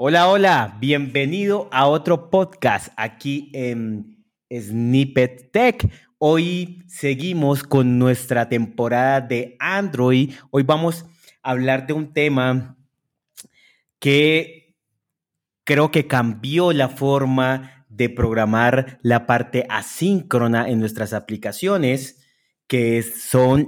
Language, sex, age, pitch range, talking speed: Spanish, male, 30-49, 120-155 Hz, 100 wpm